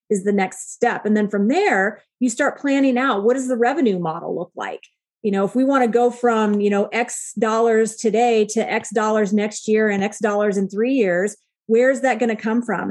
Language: English